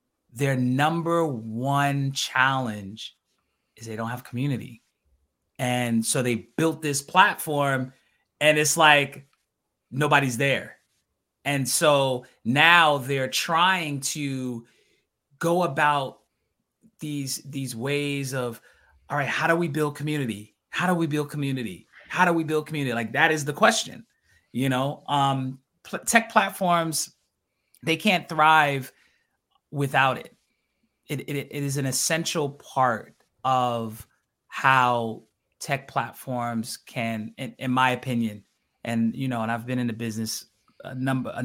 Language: English